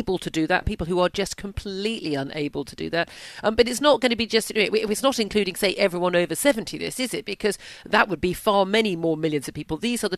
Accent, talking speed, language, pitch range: British, 255 wpm, English, 175-210 Hz